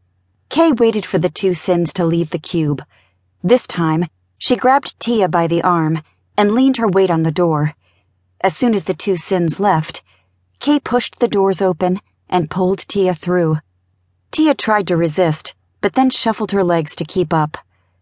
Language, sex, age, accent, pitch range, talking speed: English, female, 30-49, American, 155-205 Hz, 175 wpm